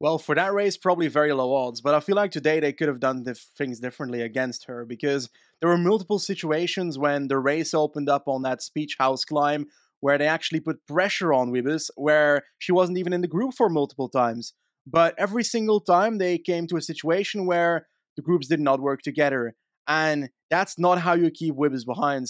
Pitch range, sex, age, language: 145-185 Hz, male, 20-39, English